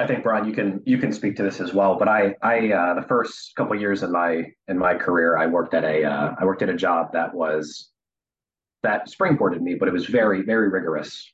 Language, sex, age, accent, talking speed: English, male, 30-49, American, 255 wpm